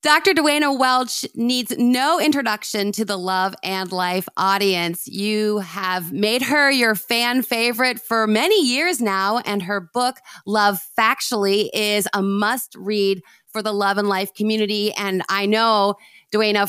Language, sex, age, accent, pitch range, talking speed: English, female, 30-49, American, 205-255 Hz, 150 wpm